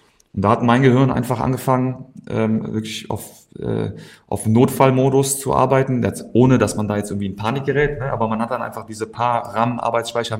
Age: 30-49